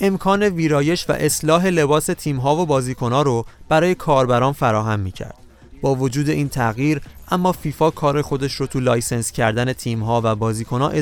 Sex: male